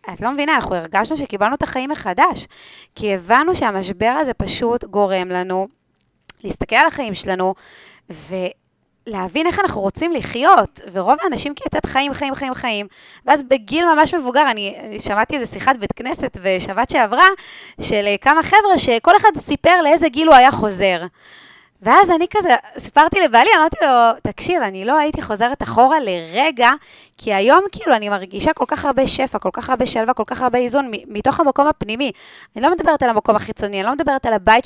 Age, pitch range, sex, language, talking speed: 20-39, 205-300 Hz, female, Hebrew, 175 wpm